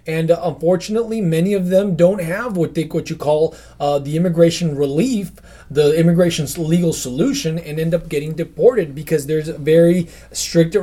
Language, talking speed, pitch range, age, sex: English, 160 wpm, 155-180 Hz, 20-39, male